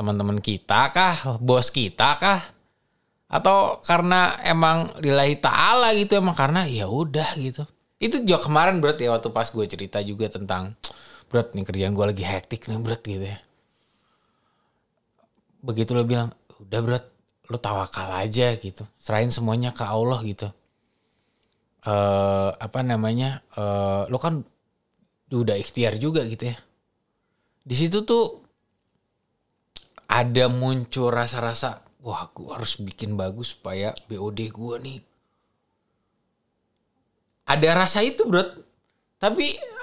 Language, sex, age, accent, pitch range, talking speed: Indonesian, male, 20-39, native, 110-160 Hz, 125 wpm